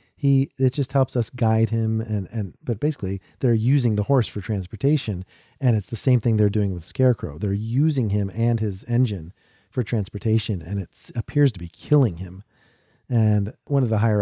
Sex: male